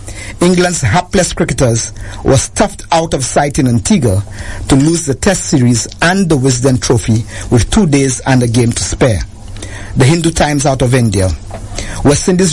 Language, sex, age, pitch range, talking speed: English, male, 50-69, 110-155 Hz, 170 wpm